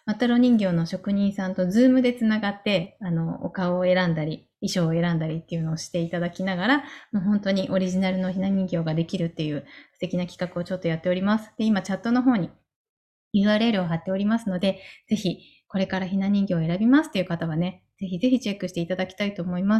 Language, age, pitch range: Japanese, 20-39, 180-225 Hz